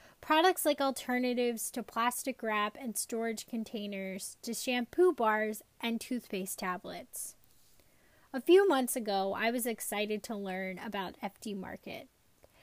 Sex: female